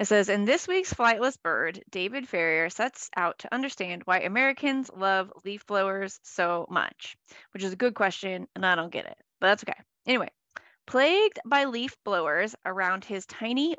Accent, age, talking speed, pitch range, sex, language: American, 20-39, 180 wpm, 200-315 Hz, female, English